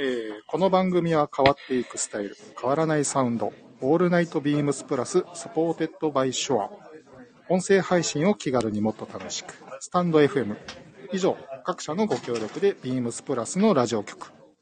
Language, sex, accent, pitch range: Japanese, male, native, 115-160 Hz